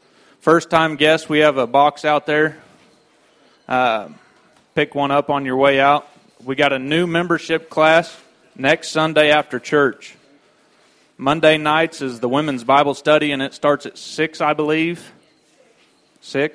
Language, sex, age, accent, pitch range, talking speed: English, male, 30-49, American, 130-150 Hz, 150 wpm